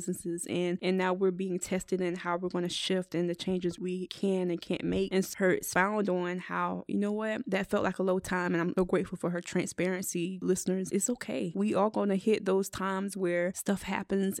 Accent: American